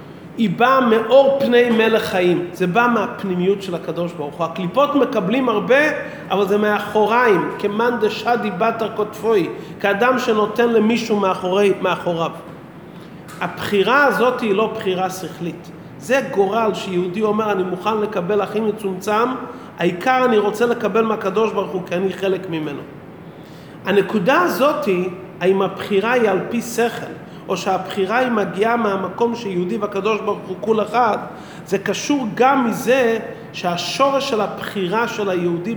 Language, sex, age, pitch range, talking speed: English, male, 40-59, 190-235 Hz, 130 wpm